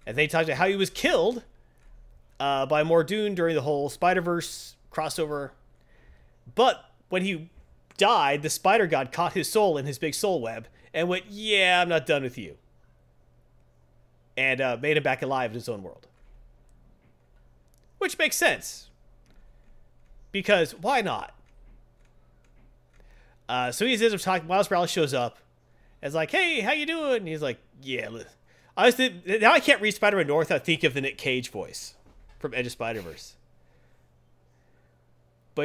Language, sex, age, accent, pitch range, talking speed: English, male, 30-49, American, 115-175 Hz, 160 wpm